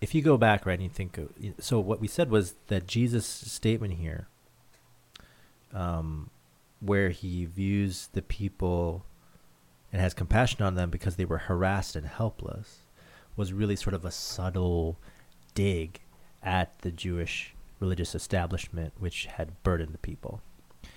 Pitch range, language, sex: 85-100 Hz, English, male